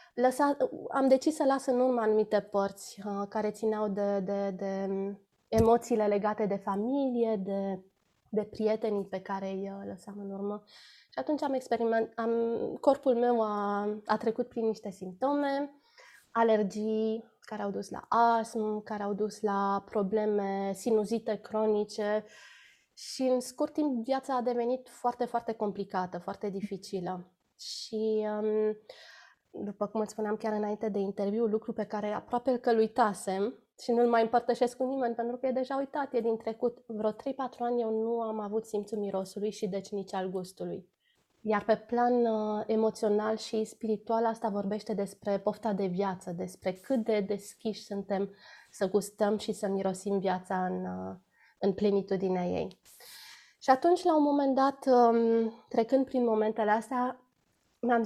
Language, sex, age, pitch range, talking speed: Romanian, female, 20-39, 205-240 Hz, 150 wpm